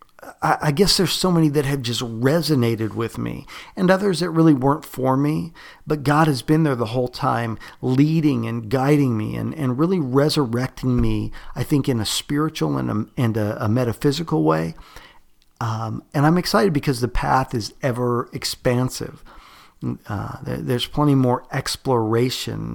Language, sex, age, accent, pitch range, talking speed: English, male, 50-69, American, 115-150 Hz, 160 wpm